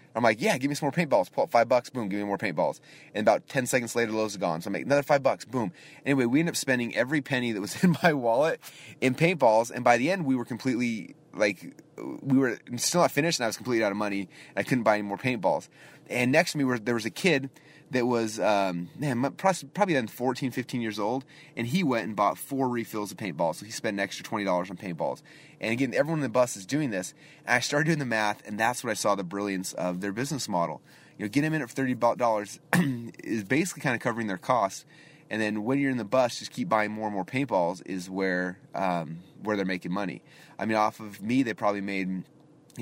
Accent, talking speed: American, 250 wpm